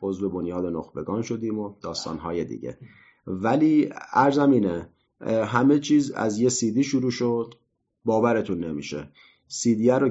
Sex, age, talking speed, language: male, 30-49, 135 wpm, Persian